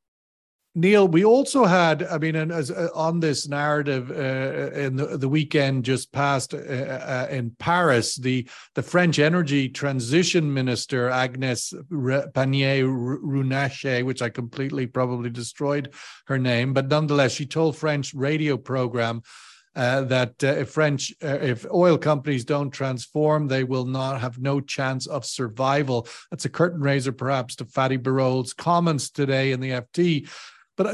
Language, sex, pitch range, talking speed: English, male, 135-165 Hz, 150 wpm